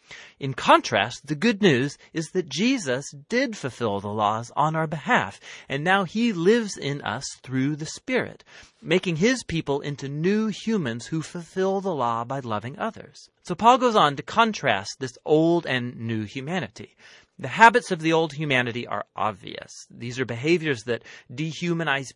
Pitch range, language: 120-170 Hz, English